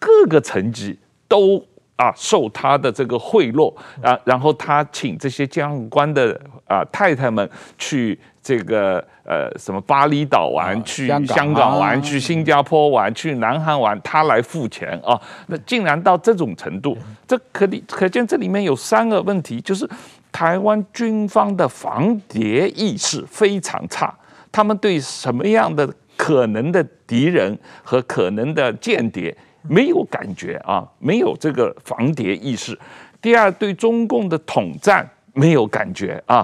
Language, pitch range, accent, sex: Chinese, 135-200 Hz, native, male